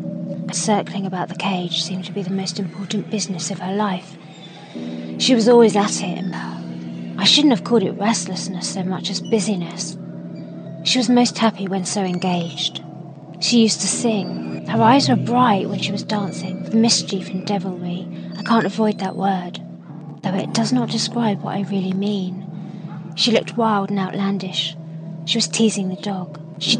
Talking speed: 170 wpm